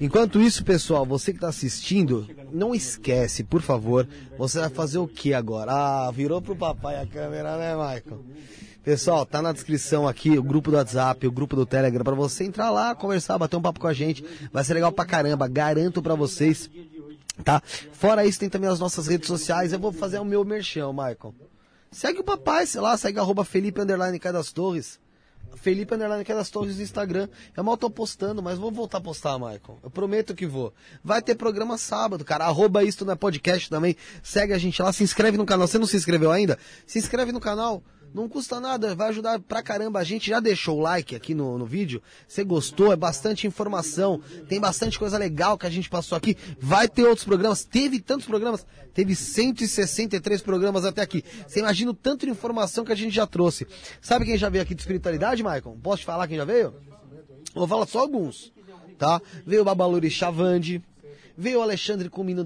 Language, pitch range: Portuguese, 155-210 Hz